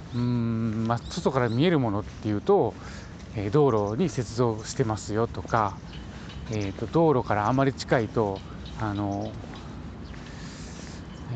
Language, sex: Japanese, male